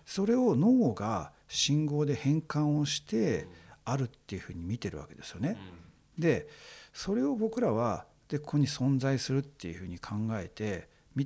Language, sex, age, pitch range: Japanese, male, 50-69, 95-150 Hz